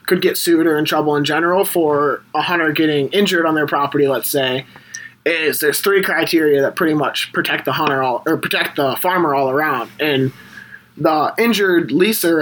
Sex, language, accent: male, English, American